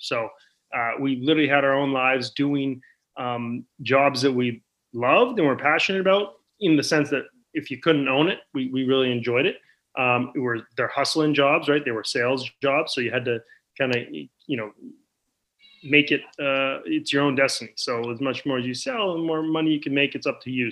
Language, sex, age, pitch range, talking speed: English, male, 30-49, 120-150 Hz, 215 wpm